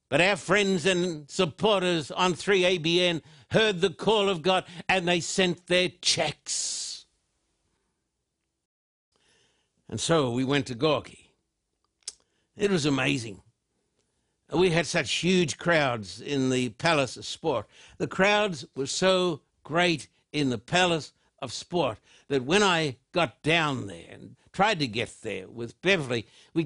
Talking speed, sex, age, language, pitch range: 135 wpm, male, 60-79, English, 140-190 Hz